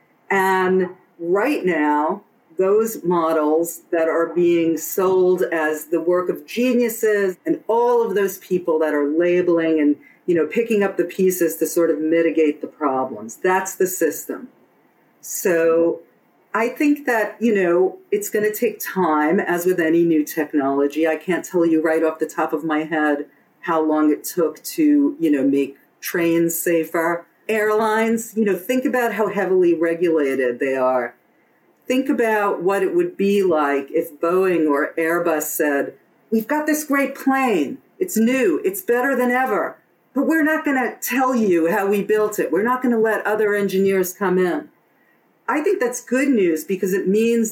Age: 50-69